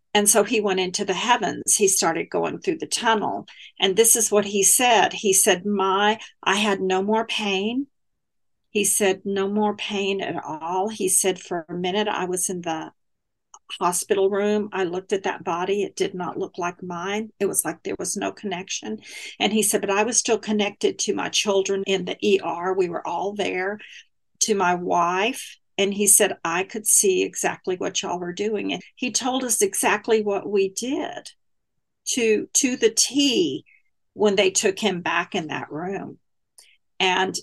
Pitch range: 190-225 Hz